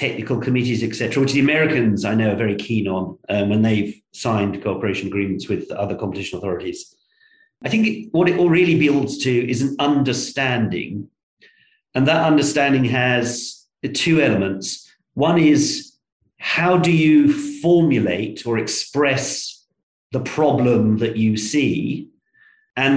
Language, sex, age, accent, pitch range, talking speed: English, male, 40-59, British, 110-140 Hz, 140 wpm